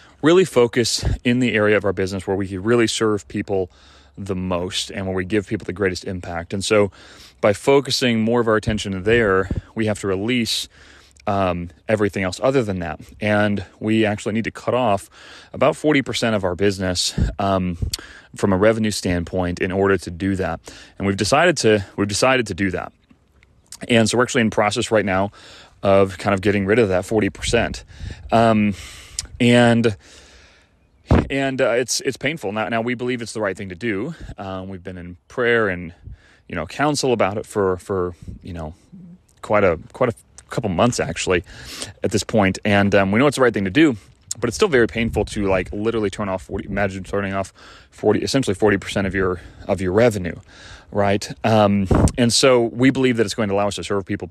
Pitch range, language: 95-115 Hz, English